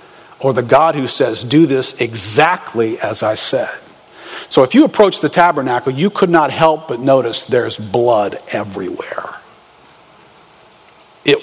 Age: 50-69